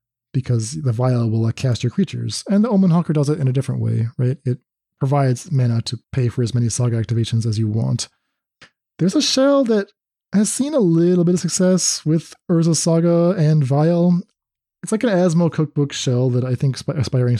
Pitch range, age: 120-155 Hz, 20-39